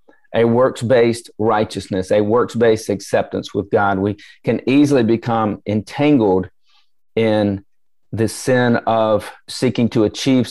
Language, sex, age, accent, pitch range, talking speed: English, male, 40-59, American, 105-130 Hz, 115 wpm